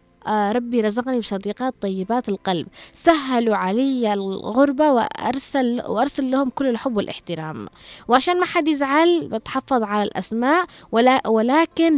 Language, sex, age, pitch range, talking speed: Arabic, female, 20-39, 205-265 Hz, 115 wpm